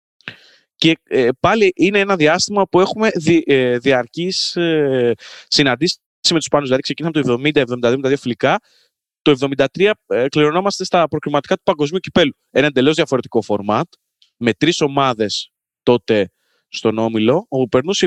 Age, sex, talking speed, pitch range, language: 20-39, male, 120 wpm, 120-165 Hz, Greek